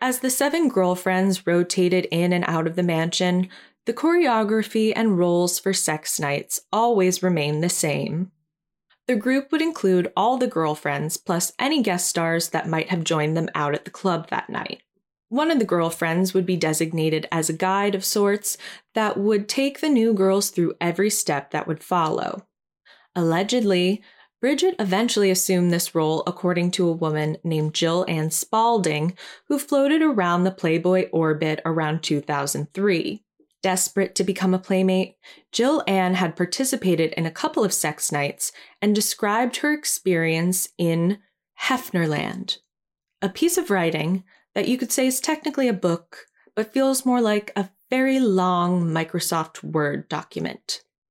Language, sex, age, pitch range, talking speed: English, female, 20-39, 165-220 Hz, 155 wpm